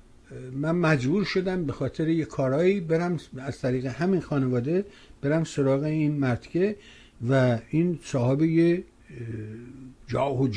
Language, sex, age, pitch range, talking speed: Persian, male, 60-79, 130-175 Hz, 115 wpm